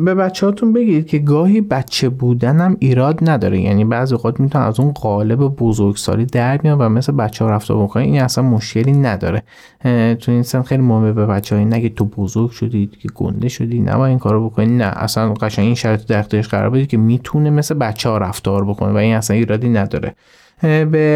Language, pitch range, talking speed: Persian, 110-150 Hz, 200 wpm